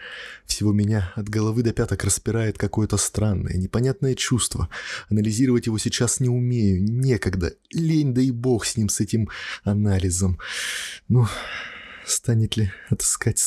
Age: 20-39